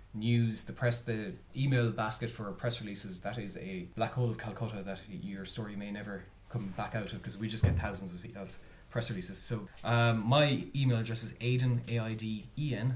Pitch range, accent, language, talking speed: 100-125 Hz, Irish, English, 195 wpm